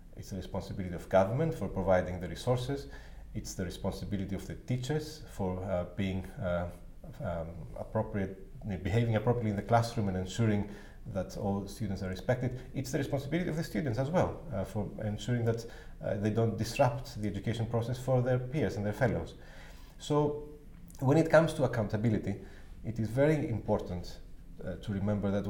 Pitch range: 95-125 Hz